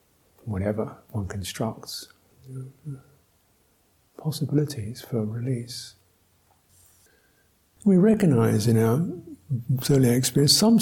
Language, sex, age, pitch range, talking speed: English, male, 60-79, 115-165 Hz, 70 wpm